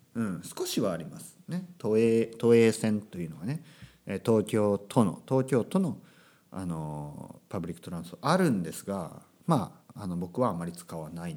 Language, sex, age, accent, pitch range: Japanese, male, 40-59, native, 110-180 Hz